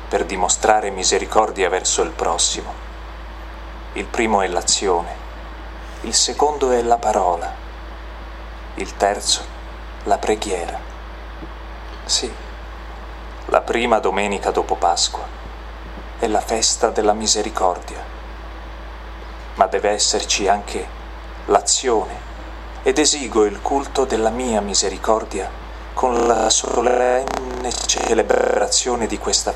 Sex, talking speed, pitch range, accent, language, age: male, 95 wpm, 65-80 Hz, native, Italian, 40-59